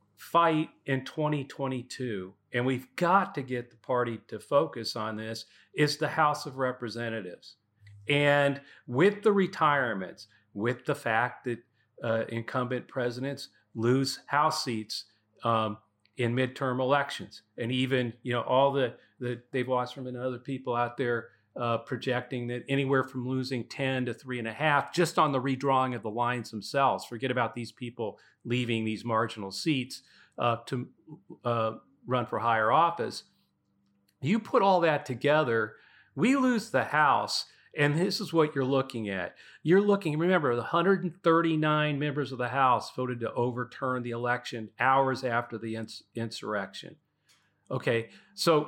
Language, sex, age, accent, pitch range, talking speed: English, male, 40-59, American, 115-145 Hz, 150 wpm